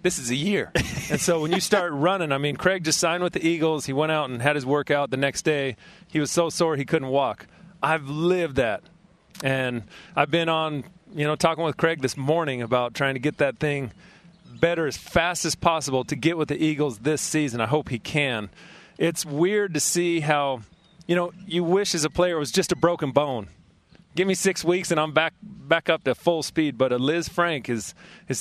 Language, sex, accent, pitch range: English, male, American, 130-175 Hz